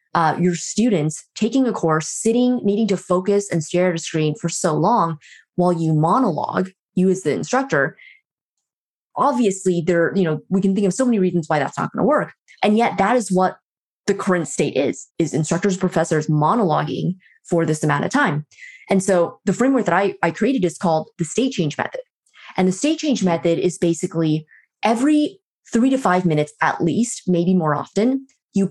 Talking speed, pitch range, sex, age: 190 wpm, 170-205 Hz, female, 20-39